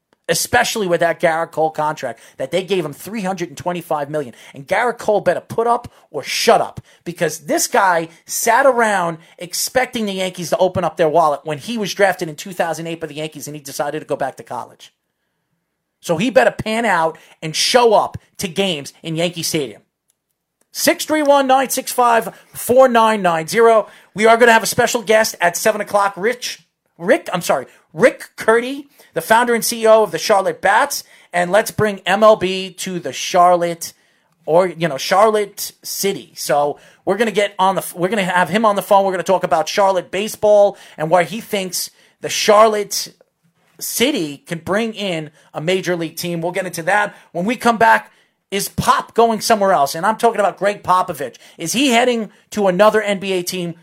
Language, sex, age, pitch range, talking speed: English, male, 40-59, 170-225 Hz, 200 wpm